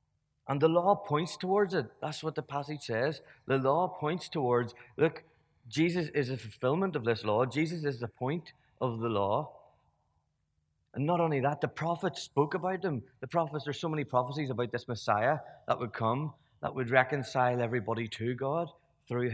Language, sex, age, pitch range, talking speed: English, male, 20-39, 110-145 Hz, 180 wpm